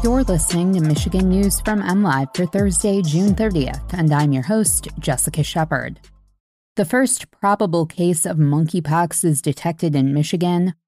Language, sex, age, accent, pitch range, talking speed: English, female, 20-39, American, 150-185 Hz, 150 wpm